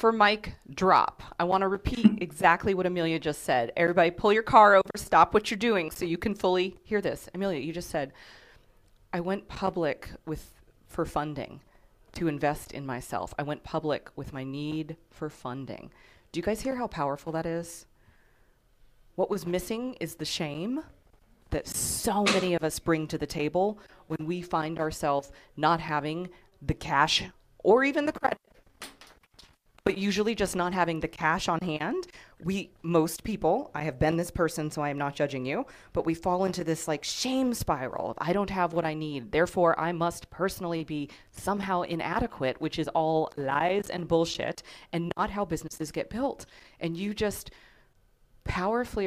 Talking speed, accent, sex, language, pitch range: 175 wpm, American, female, English, 150-195 Hz